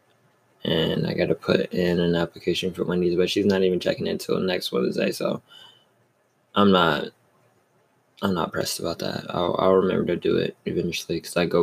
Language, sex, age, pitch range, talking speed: English, male, 20-39, 85-95 Hz, 190 wpm